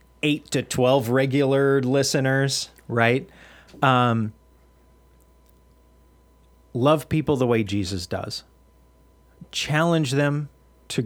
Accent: American